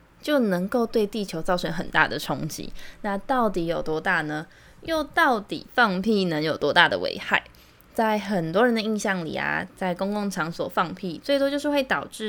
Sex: female